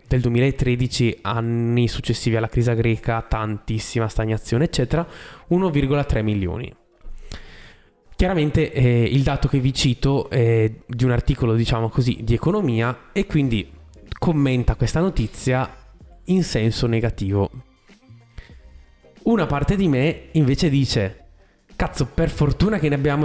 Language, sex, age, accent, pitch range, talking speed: Italian, male, 20-39, native, 115-145 Hz, 120 wpm